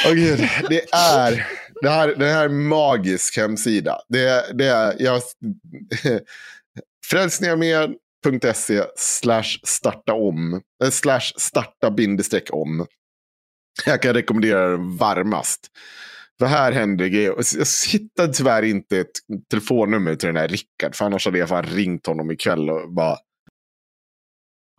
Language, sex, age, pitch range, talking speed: Swedish, male, 30-49, 95-130 Hz, 120 wpm